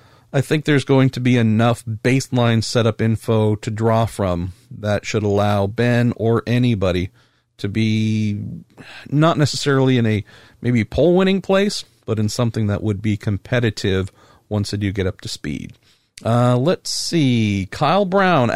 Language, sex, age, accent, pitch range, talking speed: English, male, 50-69, American, 110-145 Hz, 150 wpm